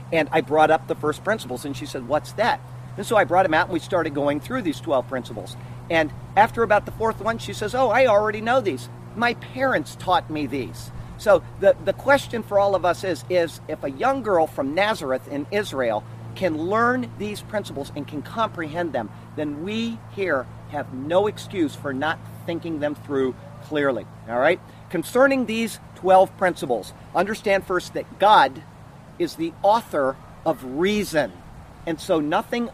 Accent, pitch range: American, 145-205 Hz